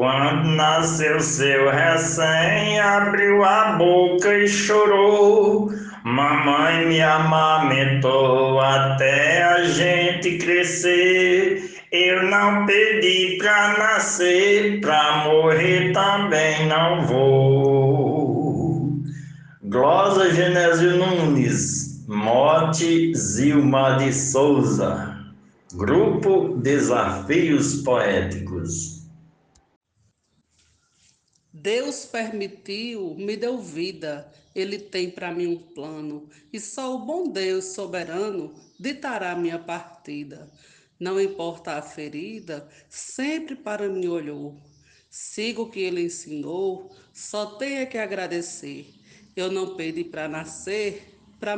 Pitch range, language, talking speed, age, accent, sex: 150-200 Hz, Portuguese, 90 wpm, 60-79, Brazilian, male